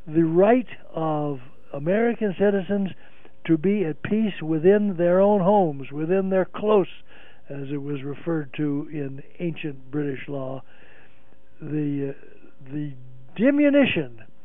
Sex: male